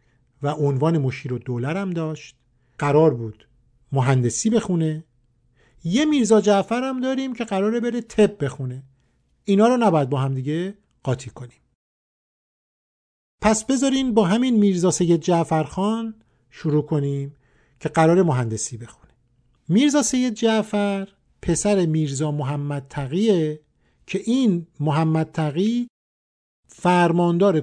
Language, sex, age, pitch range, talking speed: Persian, male, 50-69, 140-200 Hz, 115 wpm